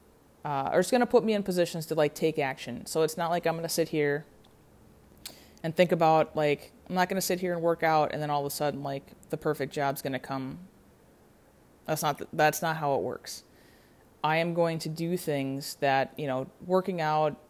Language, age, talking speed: English, 30-49, 225 wpm